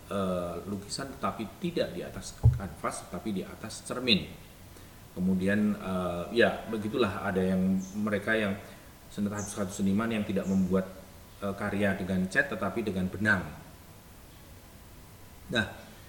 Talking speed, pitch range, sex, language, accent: 125 wpm, 90-100 Hz, male, English, Indonesian